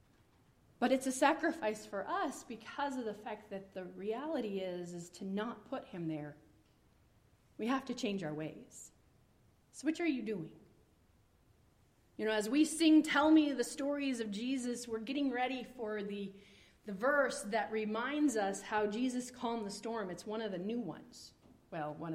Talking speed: 175 wpm